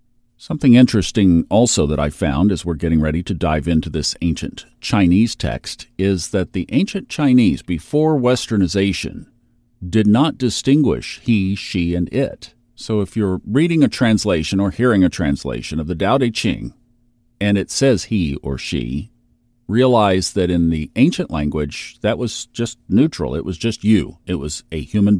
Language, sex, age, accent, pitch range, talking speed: English, male, 50-69, American, 90-125 Hz, 165 wpm